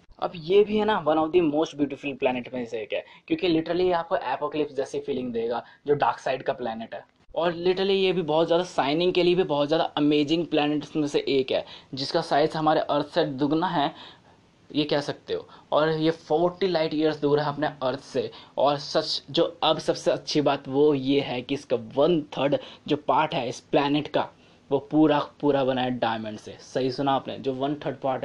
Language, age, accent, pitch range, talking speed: Hindi, 20-39, native, 140-170 Hz, 210 wpm